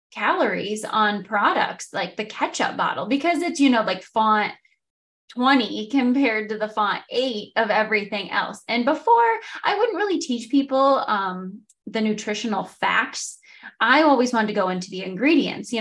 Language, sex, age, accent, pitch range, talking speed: English, female, 20-39, American, 210-290 Hz, 160 wpm